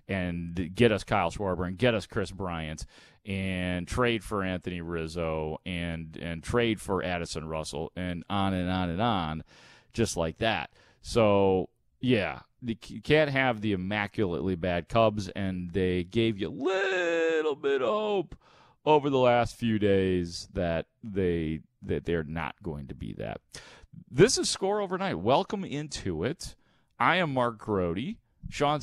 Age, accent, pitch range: 30-49, American, 90-125 Hz